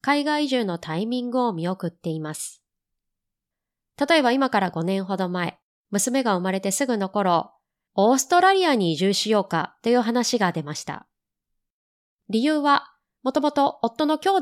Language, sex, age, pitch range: Japanese, female, 20-39, 180-270 Hz